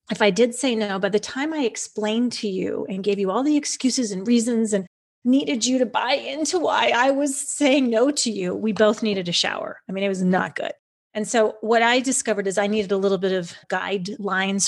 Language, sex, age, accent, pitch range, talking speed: English, female, 30-49, American, 195-235 Hz, 235 wpm